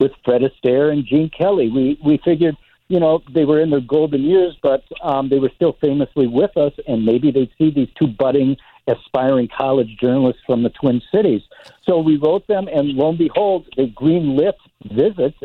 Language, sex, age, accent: English, male, 60-79, American